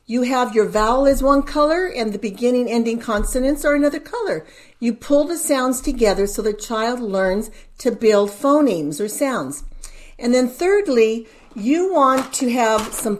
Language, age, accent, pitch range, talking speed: English, 50-69, American, 220-295 Hz, 170 wpm